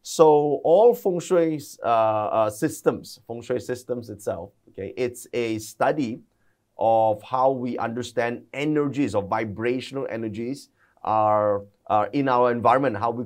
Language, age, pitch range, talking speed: English, 30-49, 105-125 Hz, 135 wpm